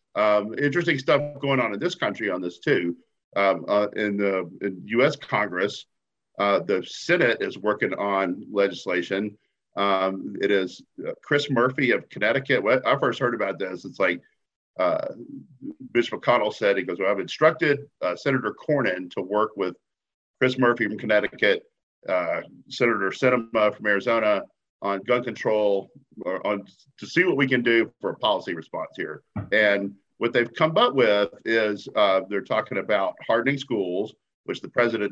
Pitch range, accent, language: 100-130 Hz, American, English